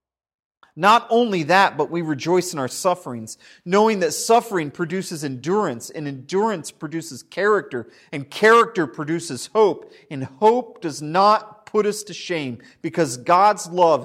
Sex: male